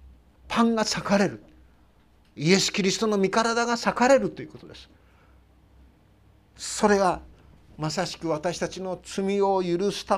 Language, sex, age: Japanese, male, 50-69